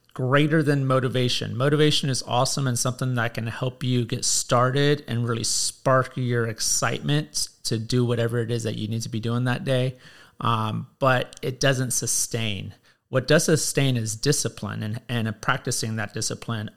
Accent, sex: American, male